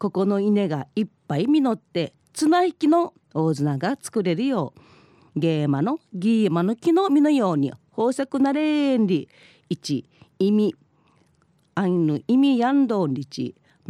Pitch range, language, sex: 160-250 Hz, Japanese, female